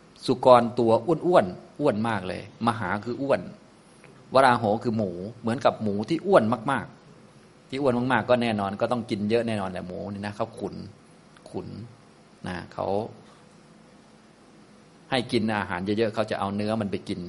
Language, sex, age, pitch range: Thai, male, 20-39, 105-120 Hz